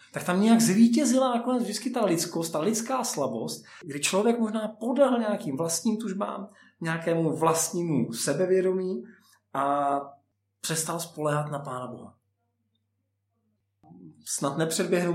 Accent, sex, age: native, male, 40-59